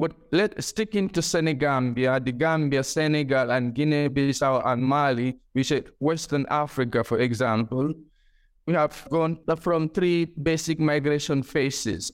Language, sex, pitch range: English, male, 140-165 Hz